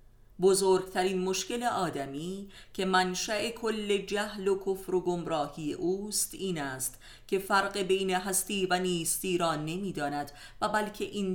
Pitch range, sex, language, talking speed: 145-195 Hz, female, Persian, 140 wpm